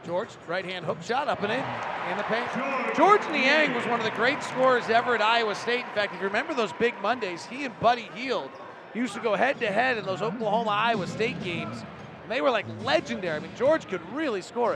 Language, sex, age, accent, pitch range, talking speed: English, male, 40-59, American, 175-225 Hz, 225 wpm